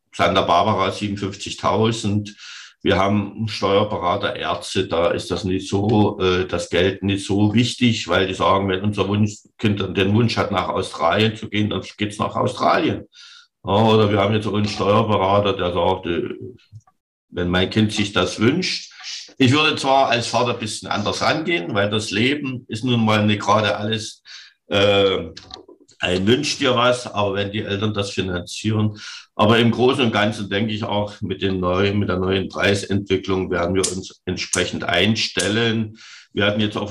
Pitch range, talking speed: 95-110 Hz, 165 wpm